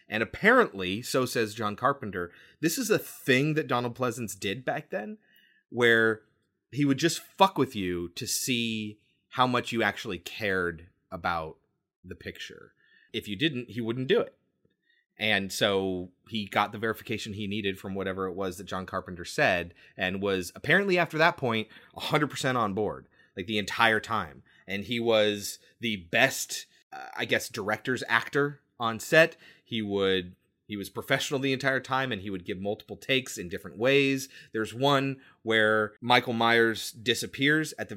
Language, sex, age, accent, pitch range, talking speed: English, male, 30-49, American, 100-135 Hz, 165 wpm